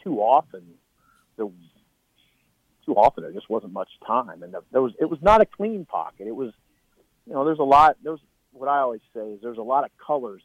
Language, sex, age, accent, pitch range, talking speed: English, male, 40-59, American, 105-140 Hz, 210 wpm